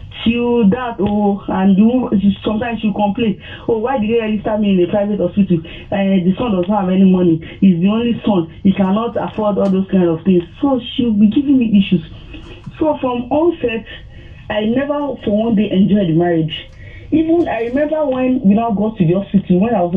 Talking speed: 205 wpm